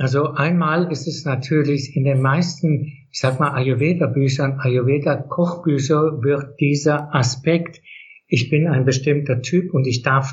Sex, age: male, 60-79